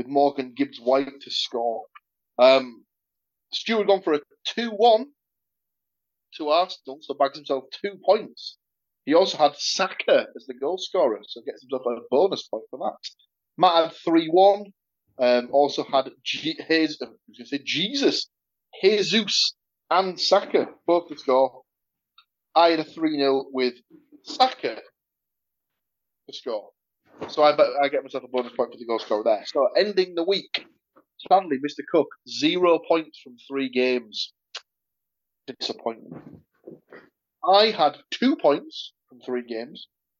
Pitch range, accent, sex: 135-200 Hz, British, male